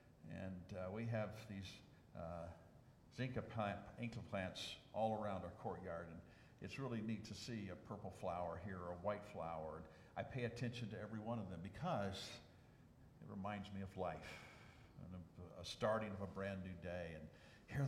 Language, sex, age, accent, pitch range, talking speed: English, male, 50-69, American, 100-145 Hz, 180 wpm